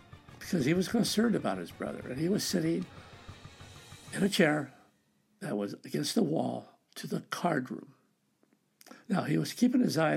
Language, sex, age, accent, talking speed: English, male, 60-79, American, 170 wpm